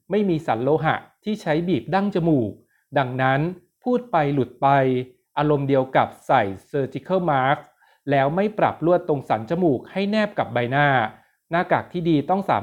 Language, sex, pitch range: Thai, male, 130-170 Hz